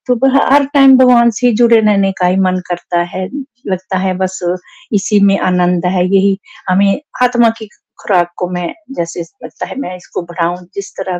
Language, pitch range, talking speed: Hindi, 180-230 Hz, 175 wpm